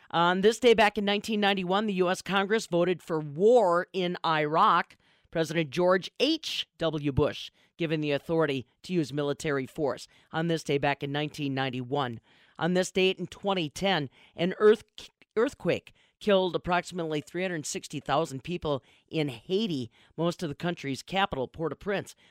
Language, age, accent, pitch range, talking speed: English, 40-59, American, 155-215 Hz, 135 wpm